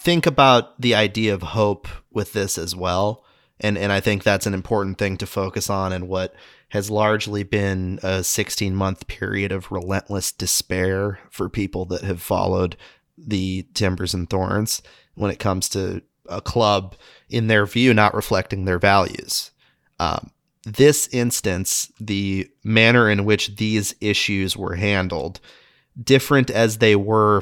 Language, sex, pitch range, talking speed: English, male, 95-110 Hz, 150 wpm